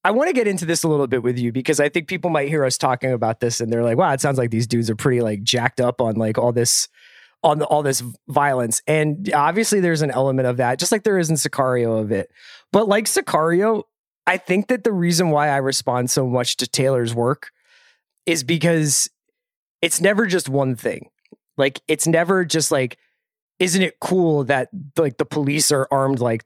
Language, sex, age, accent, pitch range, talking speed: English, male, 20-39, American, 130-175 Hz, 220 wpm